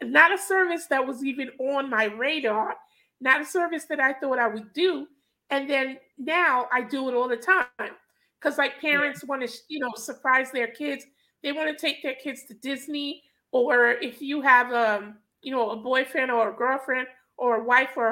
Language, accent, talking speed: English, American, 200 wpm